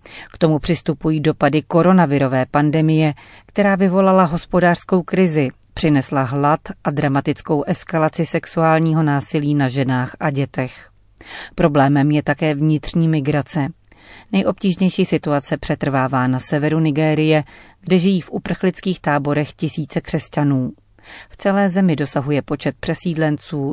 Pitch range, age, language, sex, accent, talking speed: 140-165 Hz, 40-59, Czech, female, native, 115 wpm